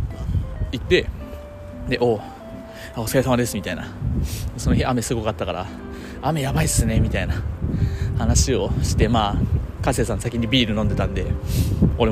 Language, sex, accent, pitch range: Japanese, male, native, 90-120 Hz